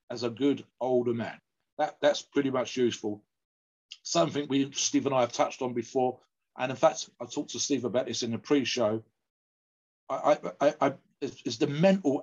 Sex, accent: male, British